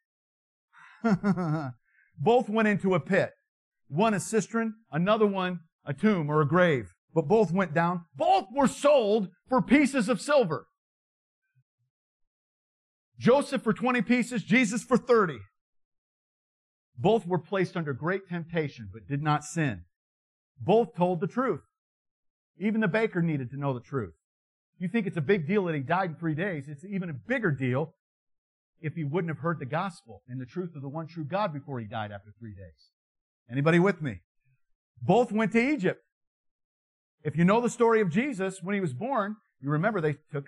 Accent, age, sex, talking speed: American, 50-69, male, 170 wpm